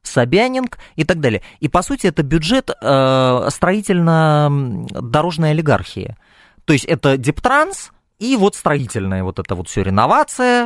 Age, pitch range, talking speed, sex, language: 20-39, 110-170 Hz, 135 wpm, male, Russian